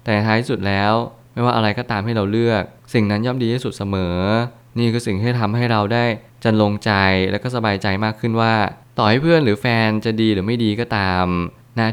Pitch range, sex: 100-115 Hz, male